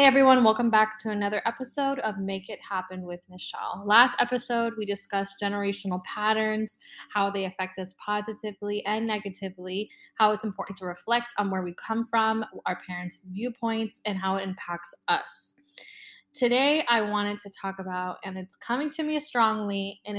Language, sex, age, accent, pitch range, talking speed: English, female, 10-29, American, 195-240 Hz, 170 wpm